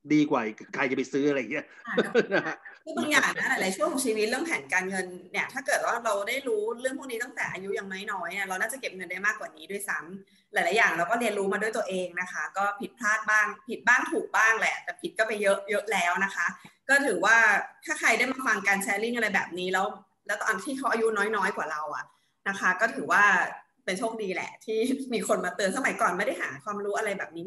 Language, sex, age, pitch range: Thai, female, 20-39, 195-250 Hz